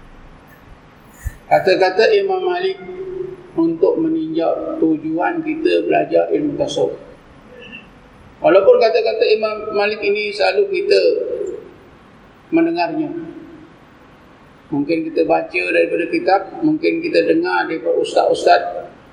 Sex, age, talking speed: male, 50-69, 90 wpm